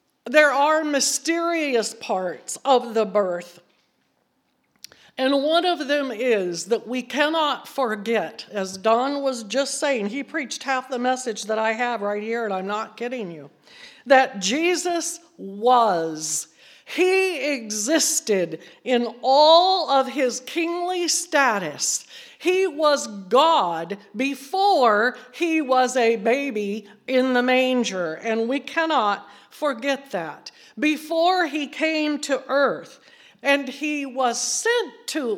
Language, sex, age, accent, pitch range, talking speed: English, female, 60-79, American, 210-295 Hz, 125 wpm